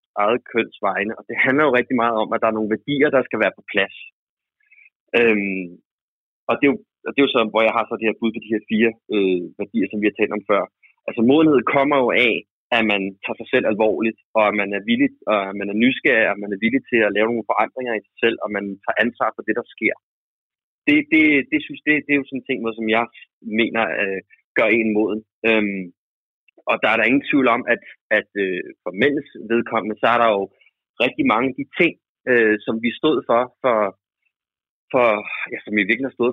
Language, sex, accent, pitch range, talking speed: Danish, male, native, 105-140 Hz, 235 wpm